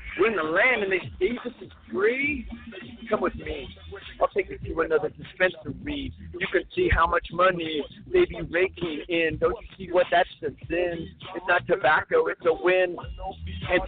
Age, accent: 50-69, American